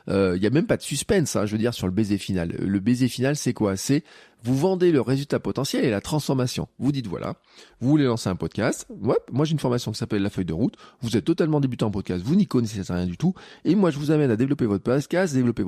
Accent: French